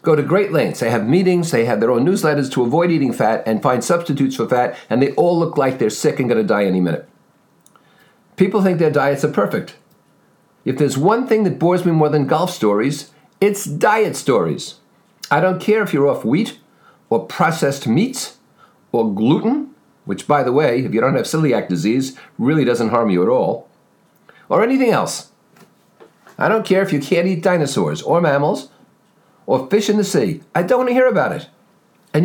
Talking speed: 200 wpm